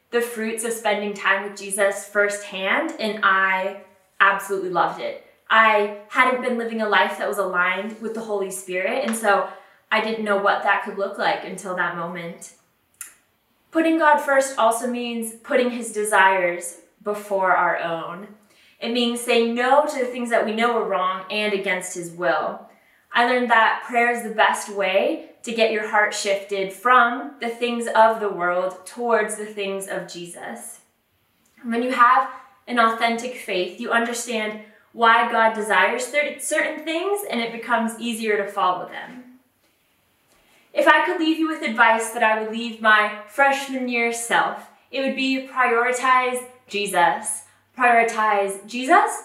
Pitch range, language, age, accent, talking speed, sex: 200-245 Hz, English, 20-39, American, 160 wpm, female